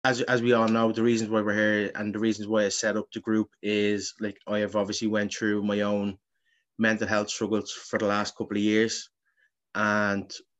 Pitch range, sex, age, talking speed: 105-110 Hz, male, 20-39, 215 wpm